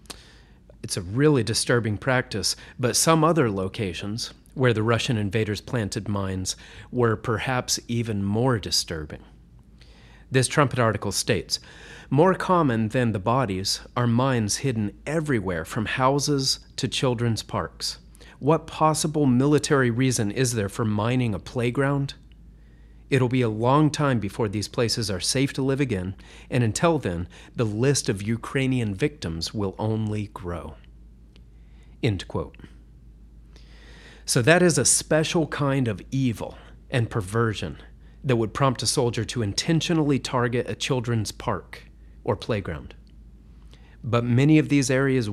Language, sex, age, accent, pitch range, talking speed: English, male, 40-59, American, 95-130 Hz, 135 wpm